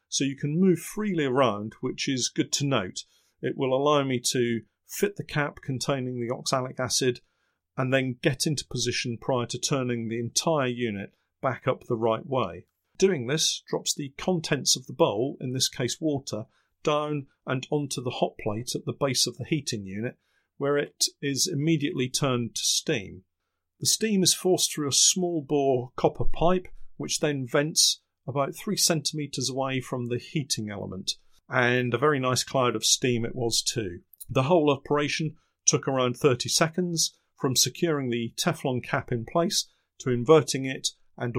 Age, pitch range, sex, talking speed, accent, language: 40-59, 120-150 Hz, male, 175 wpm, British, English